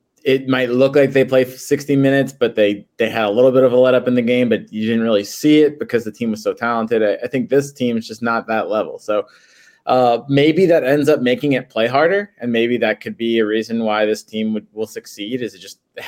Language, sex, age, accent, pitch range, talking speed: English, male, 20-39, American, 115-140 Hz, 260 wpm